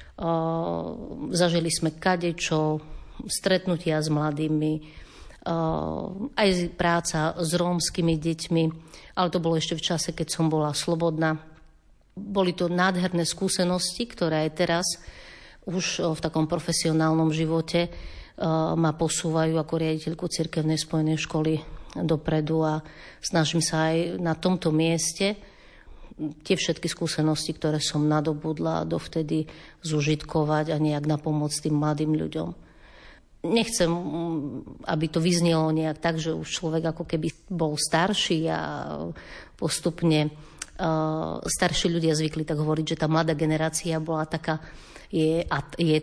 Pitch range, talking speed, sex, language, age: 155-175 Hz, 115 wpm, female, Slovak, 50-69